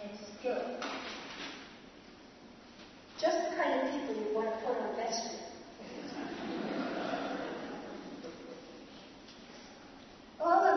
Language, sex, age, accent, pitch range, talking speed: English, female, 50-69, American, 225-280 Hz, 70 wpm